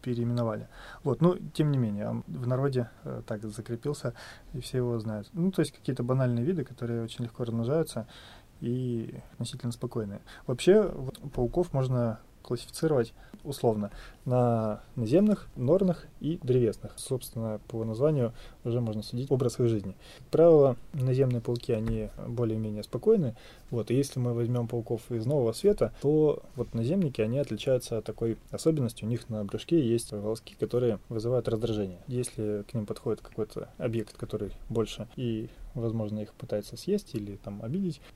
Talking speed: 155 wpm